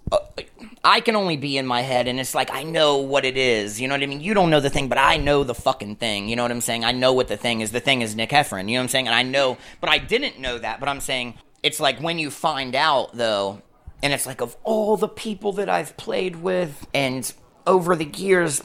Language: English